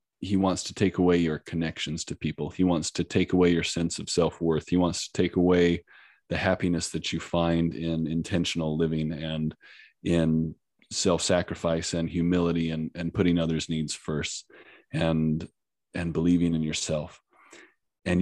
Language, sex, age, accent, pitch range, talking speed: English, male, 30-49, American, 85-100 Hz, 160 wpm